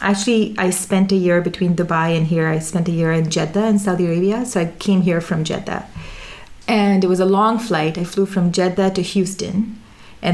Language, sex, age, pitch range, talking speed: English, female, 30-49, 170-195 Hz, 215 wpm